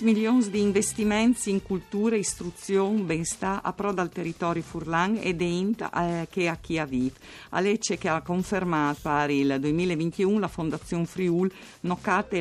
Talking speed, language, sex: 145 wpm, Italian, female